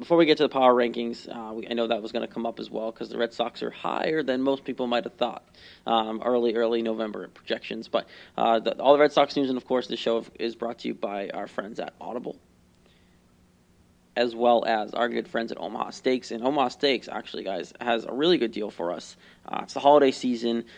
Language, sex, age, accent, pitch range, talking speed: English, male, 20-39, American, 115-125 Hz, 245 wpm